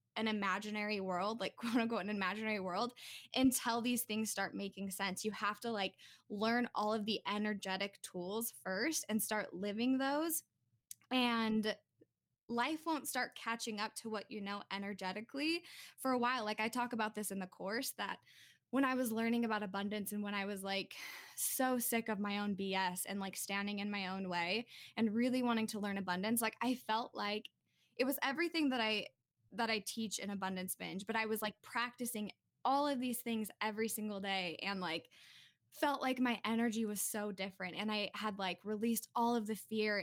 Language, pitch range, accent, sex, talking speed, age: English, 200-240 Hz, American, female, 190 wpm, 10-29